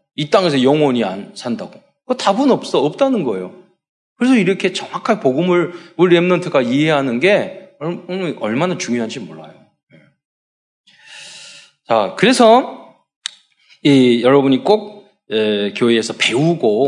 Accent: native